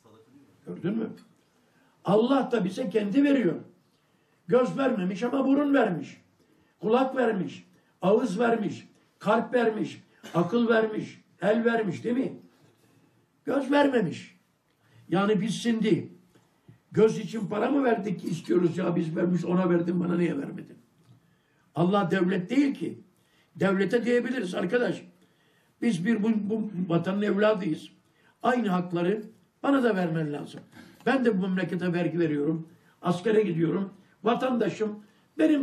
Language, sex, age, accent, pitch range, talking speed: Turkish, male, 60-79, native, 170-235 Hz, 120 wpm